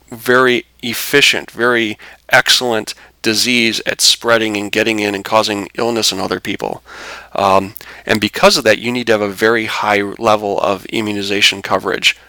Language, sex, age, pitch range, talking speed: English, male, 40-59, 105-120 Hz, 155 wpm